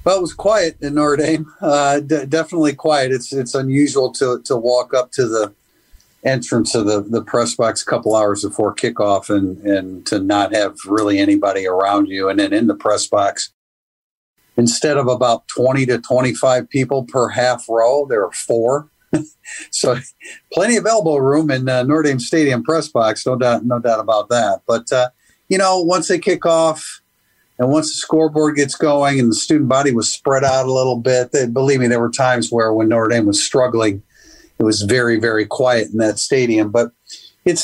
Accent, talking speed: American, 200 wpm